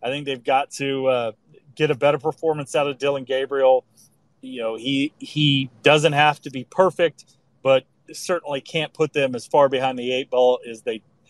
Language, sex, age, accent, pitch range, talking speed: English, male, 30-49, American, 125-155 Hz, 190 wpm